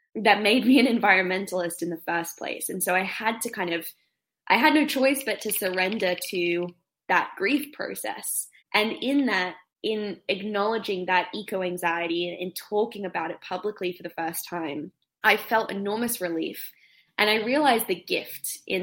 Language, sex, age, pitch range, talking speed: English, female, 10-29, 175-205 Hz, 170 wpm